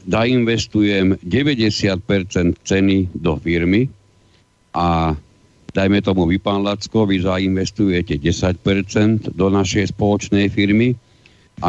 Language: Slovak